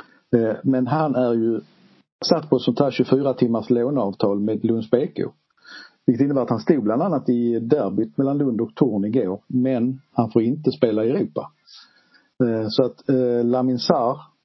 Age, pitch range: 50-69, 115-135 Hz